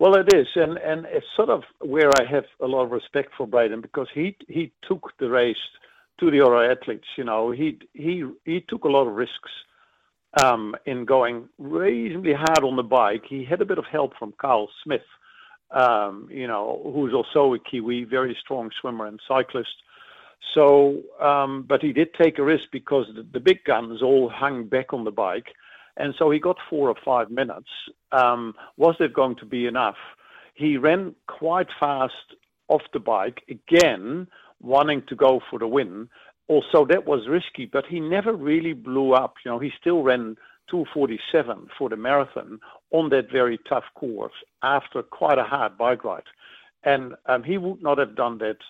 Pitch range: 125-160 Hz